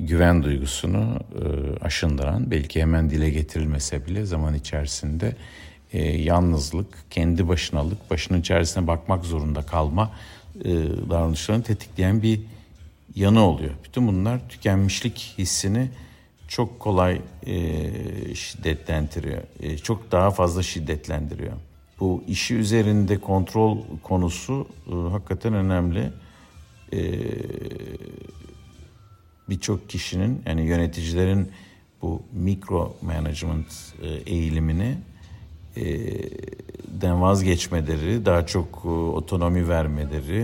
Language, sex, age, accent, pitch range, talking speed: Turkish, male, 50-69, native, 80-100 Hz, 90 wpm